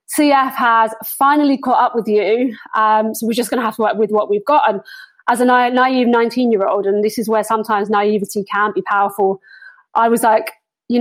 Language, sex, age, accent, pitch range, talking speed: English, female, 20-39, British, 205-235 Hz, 220 wpm